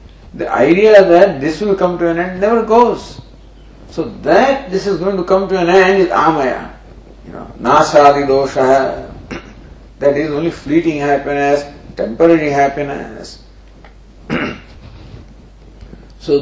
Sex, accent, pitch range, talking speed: male, Indian, 120-175 Hz, 130 wpm